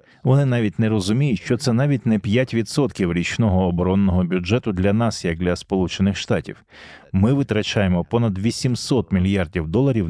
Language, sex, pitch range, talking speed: Ukrainian, male, 90-120 Hz, 145 wpm